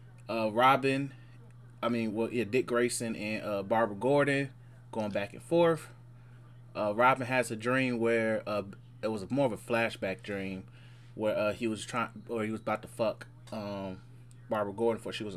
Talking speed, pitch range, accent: 185 wpm, 110-120 Hz, American